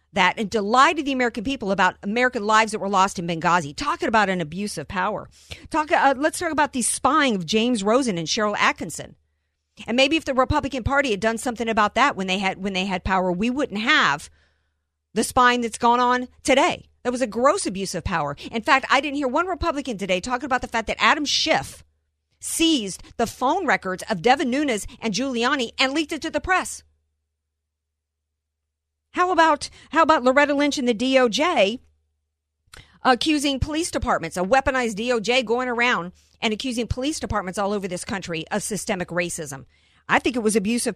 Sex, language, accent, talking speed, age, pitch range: female, English, American, 190 wpm, 50-69, 185-265 Hz